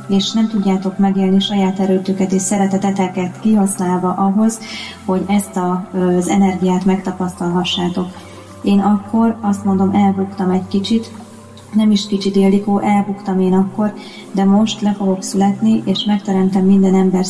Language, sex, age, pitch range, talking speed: Hungarian, female, 20-39, 190-205 Hz, 130 wpm